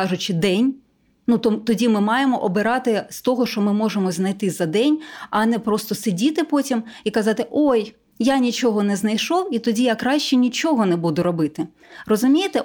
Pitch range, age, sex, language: 195-245 Hz, 20-39, female, Ukrainian